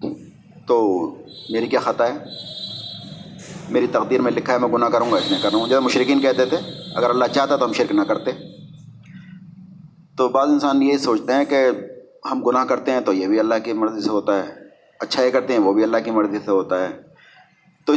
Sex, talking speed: male, 205 wpm